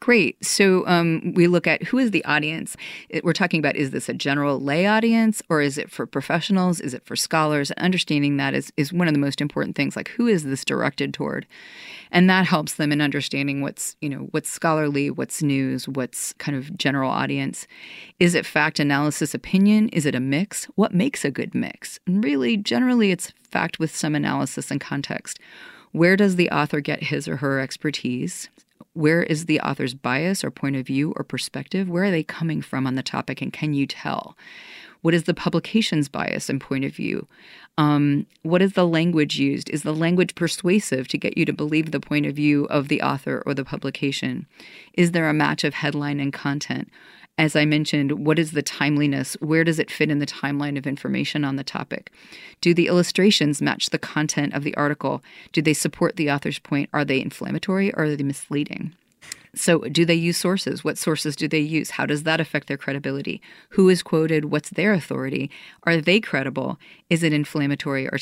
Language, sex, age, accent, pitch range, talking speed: English, female, 30-49, American, 145-175 Hz, 200 wpm